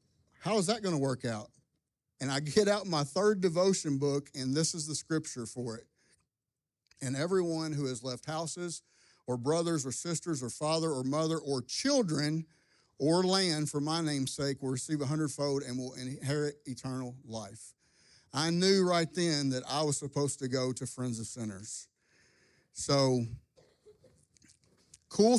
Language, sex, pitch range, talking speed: English, male, 130-165 Hz, 165 wpm